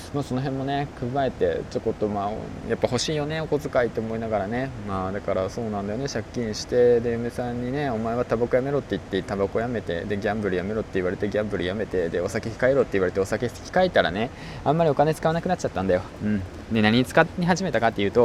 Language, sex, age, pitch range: Japanese, male, 20-39, 100-135 Hz